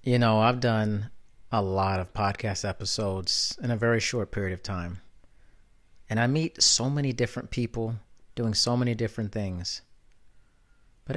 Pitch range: 110-130 Hz